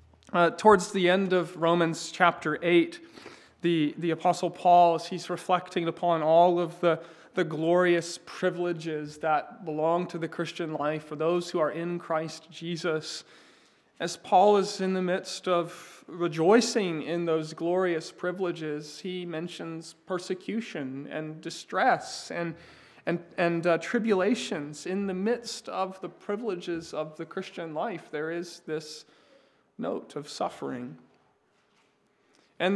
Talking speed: 135 wpm